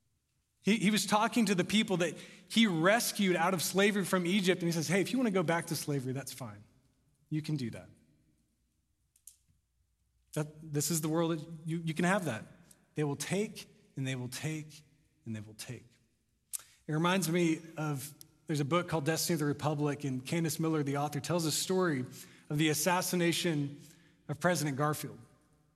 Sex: male